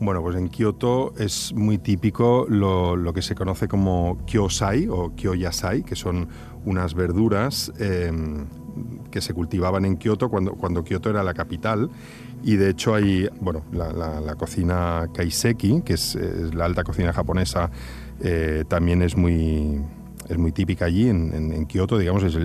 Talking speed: 170 wpm